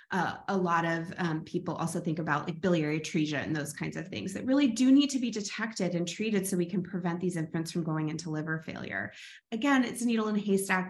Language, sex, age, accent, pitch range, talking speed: English, female, 20-39, American, 170-210 Hz, 240 wpm